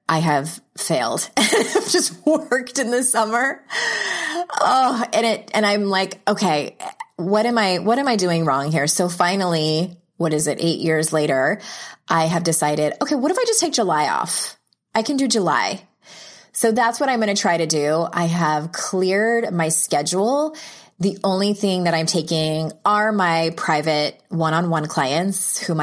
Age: 20-39